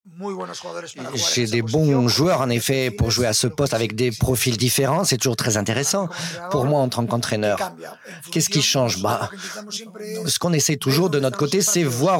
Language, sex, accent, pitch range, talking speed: French, male, French, 130-180 Hz, 180 wpm